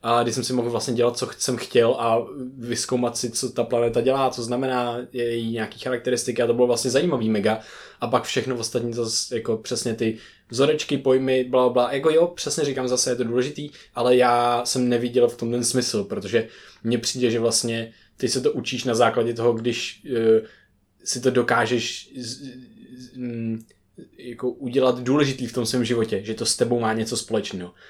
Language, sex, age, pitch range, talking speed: Czech, male, 20-39, 115-125 Hz, 200 wpm